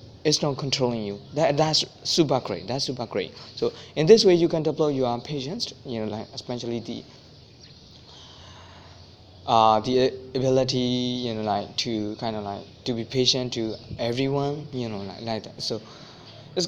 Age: 20-39